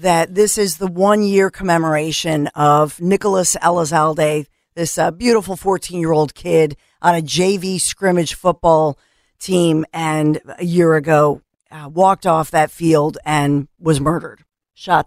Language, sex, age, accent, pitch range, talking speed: English, female, 50-69, American, 150-175 Hz, 130 wpm